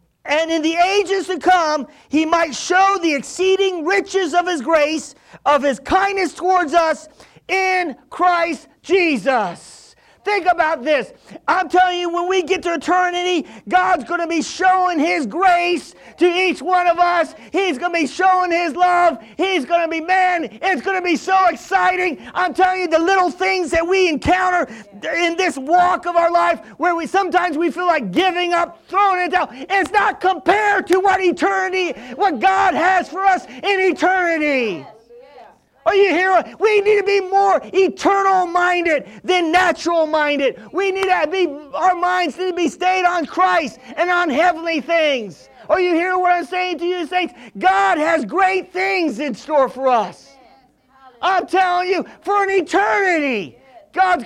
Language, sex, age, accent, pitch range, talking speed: English, male, 40-59, American, 320-370 Hz, 175 wpm